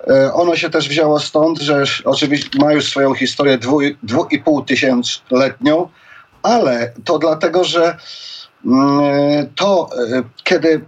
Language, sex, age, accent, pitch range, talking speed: Polish, male, 40-59, native, 125-150 Hz, 110 wpm